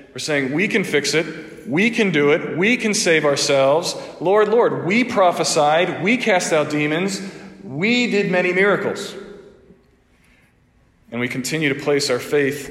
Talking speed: 155 wpm